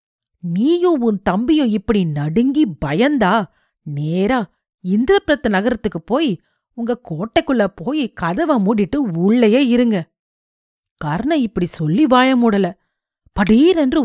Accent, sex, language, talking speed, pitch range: native, female, Tamil, 95 wpm, 185-270 Hz